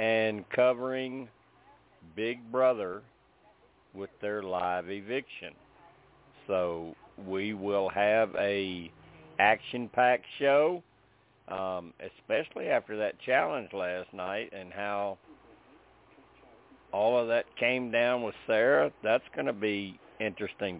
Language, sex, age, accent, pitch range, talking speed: English, male, 50-69, American, 100-125 Hz, 105 wpm